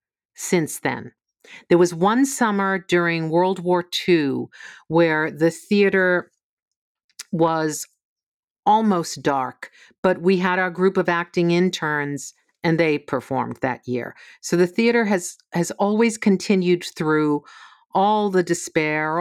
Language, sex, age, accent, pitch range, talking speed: English, female, 50-69, American, 165-205 Hz, 125 wpm